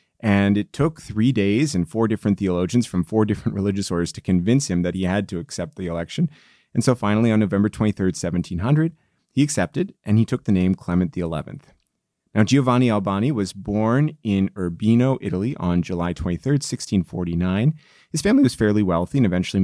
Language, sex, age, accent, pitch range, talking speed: English, male, 30-49, American, 90-110 Hz, 180 wpm